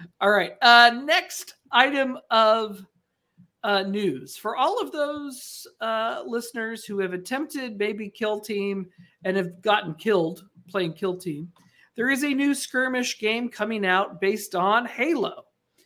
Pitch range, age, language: 175-235 Hz, 50-69, English